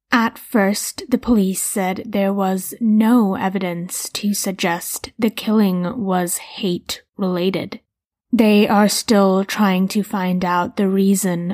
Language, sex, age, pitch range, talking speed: English, female, 20-39, 185-220 Hz, 125 wpm